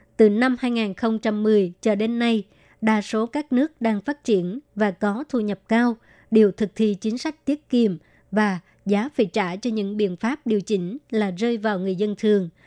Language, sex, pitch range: Vietnamese, male, 205-235 Hz